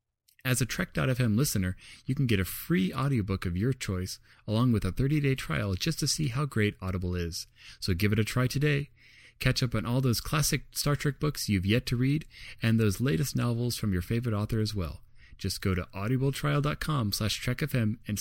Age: 30-49